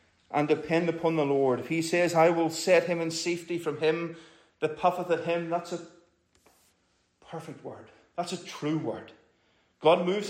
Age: 30-49